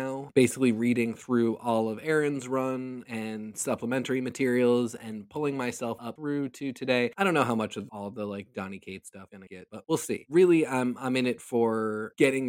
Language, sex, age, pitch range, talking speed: English, male, 20-39, 110-135 Hz, 200 wpm